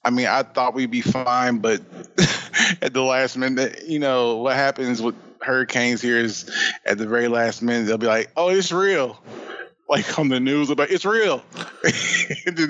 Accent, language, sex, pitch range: American, English, male, 105-125 Hz